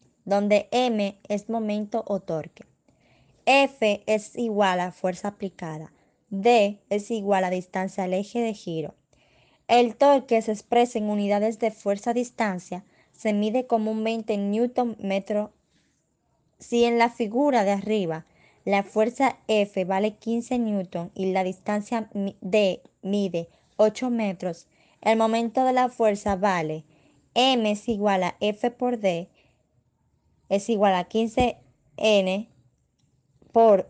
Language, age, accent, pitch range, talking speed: Spanish, 20-39, American, 190-230 Hz, 130 wpm